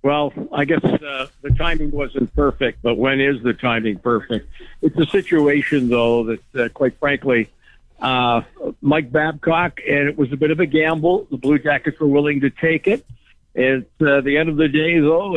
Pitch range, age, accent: 125-150 Hz, 60-79, American